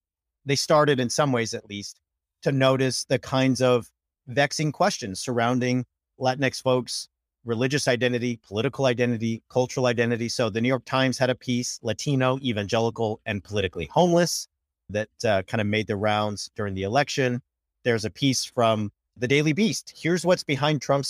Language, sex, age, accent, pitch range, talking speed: English, male, 40-59, American, 105-135 Hz, 160 wpm